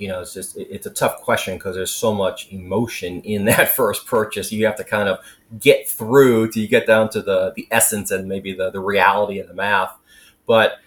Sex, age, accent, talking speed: male, 30-49, American, 225 wpm